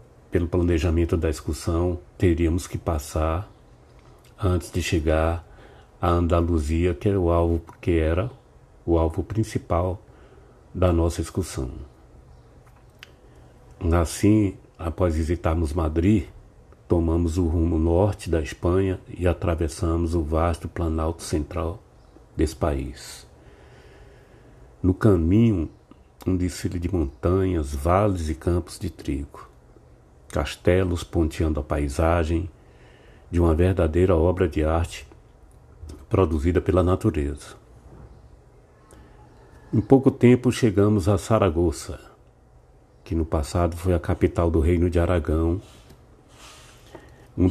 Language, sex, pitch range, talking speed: Portuguese, male, 80-95 Hz, 105 wpm